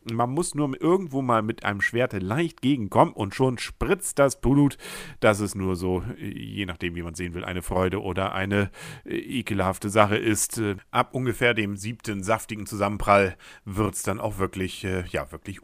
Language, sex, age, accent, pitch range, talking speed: German, male, 50-69, German, 95-120 Hz, 175 wpm